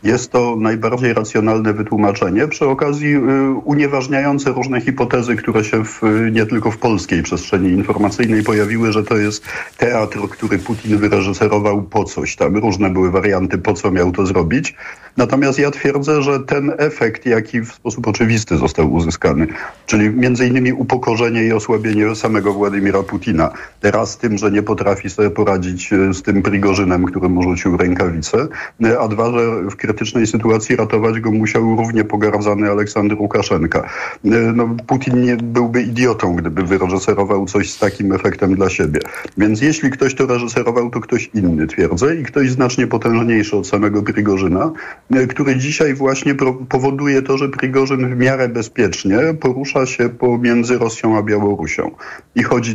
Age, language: 50-69, Polish